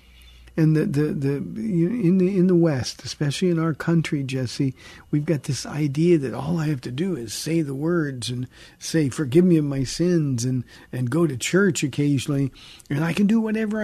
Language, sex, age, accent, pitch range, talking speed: English, male, 50-69, American, 125-170 Hz, 200 wpm